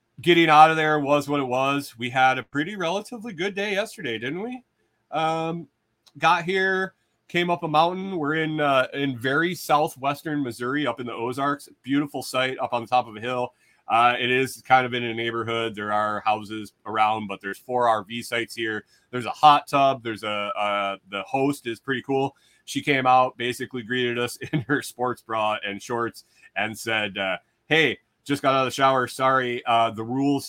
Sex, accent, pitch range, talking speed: male, American, 115-140 Hz, 200 wpm